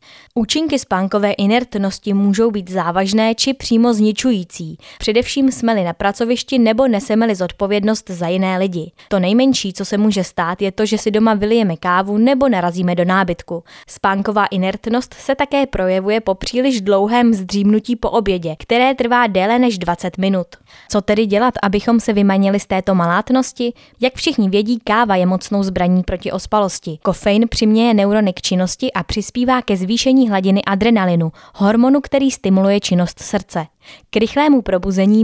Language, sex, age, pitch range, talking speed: Czech, female, 20-39, 190-235 Hz, 150 wpm